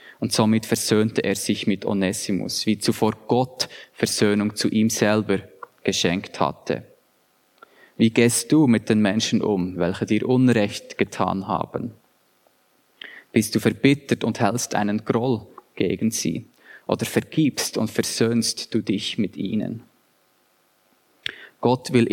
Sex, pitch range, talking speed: male, 105-120 Hz, 125 wpm